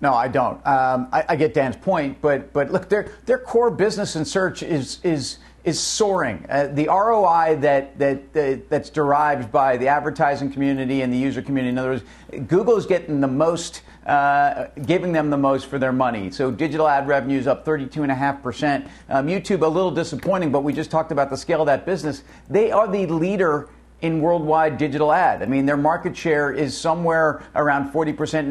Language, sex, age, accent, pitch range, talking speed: English, male, 50-69, American, 140-165 Hz, 200 wpm